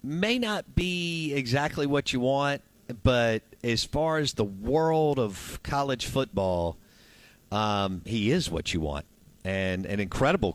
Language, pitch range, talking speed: English, 105-140 Hz, 140 wpm